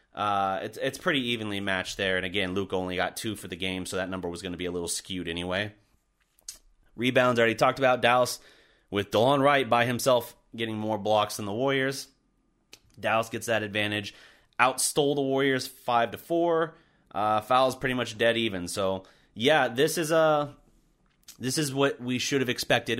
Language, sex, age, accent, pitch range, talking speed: English, male, 30-49, American, 100-130 Hz, 190 wpm